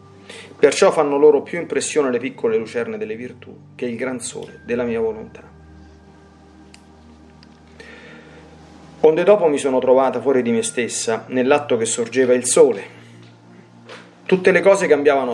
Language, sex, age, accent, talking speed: Italian, male, 40-59, native, 135 wpm